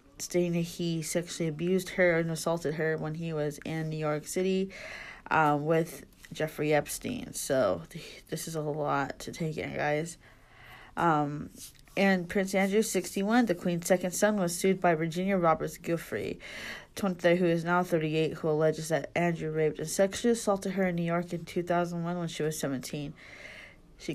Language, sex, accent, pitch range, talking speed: English, female, American, 155-175 Hz, 170 wpm